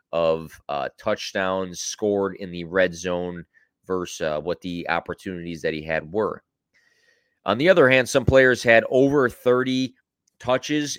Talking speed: 145 wpm